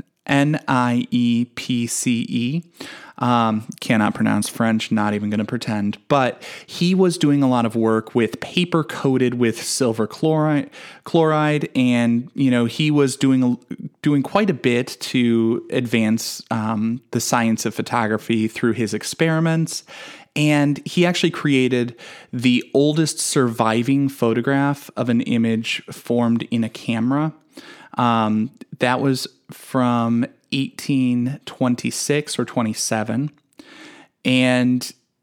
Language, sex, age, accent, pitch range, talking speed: English, male, 20-39, American, 120-155 Hz, 120 wpm